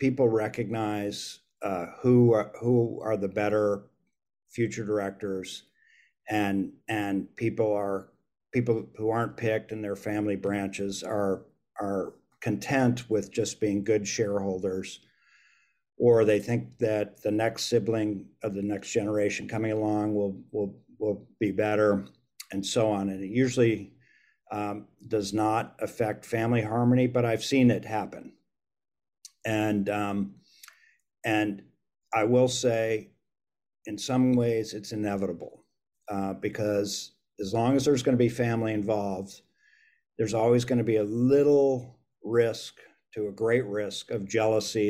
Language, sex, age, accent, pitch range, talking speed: English, male, 50-69, American, 100-115 Hz, 135 wpm